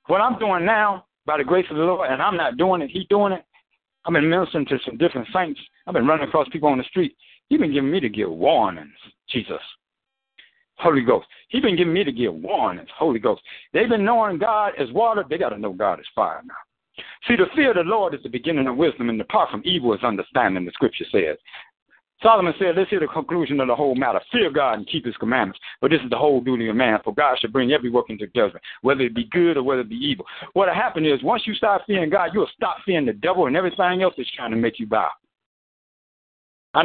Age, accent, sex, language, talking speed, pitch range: 60-79, American, male, English, 250 wpm, 150-210 Hz